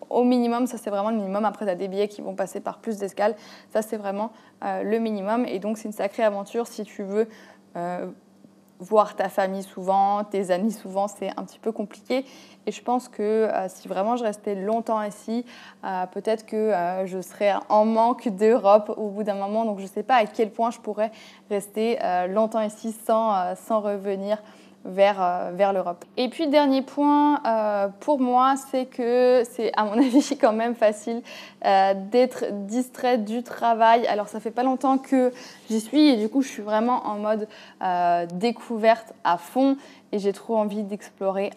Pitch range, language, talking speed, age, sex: 205-235 Hz, French, 195 wpm, 20-39, female